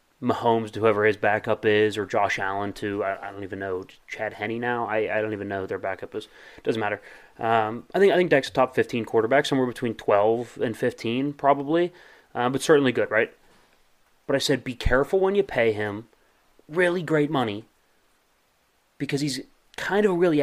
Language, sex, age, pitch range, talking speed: English, male, 30-49, 115-145 Hz, 195 wpm